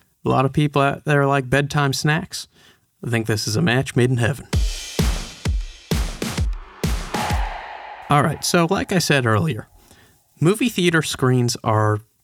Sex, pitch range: male, 110-150 Hz